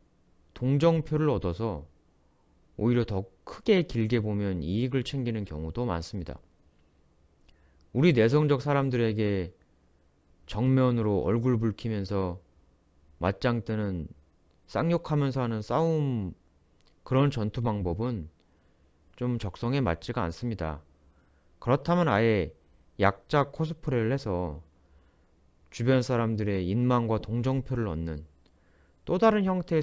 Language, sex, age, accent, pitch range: Korean, male, 30-49, native, 80-130 Hz